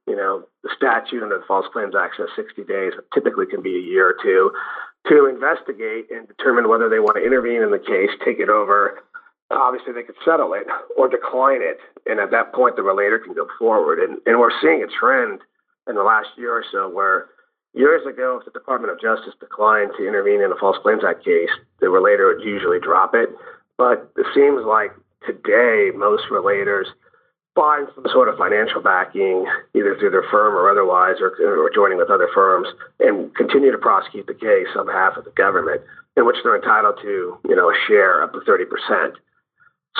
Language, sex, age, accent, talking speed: English, male, 40-59, American, 200 wpm